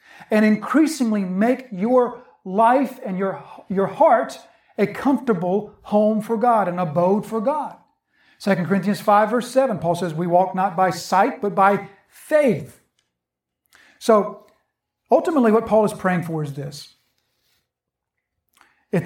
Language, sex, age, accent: English, male, 50-69, American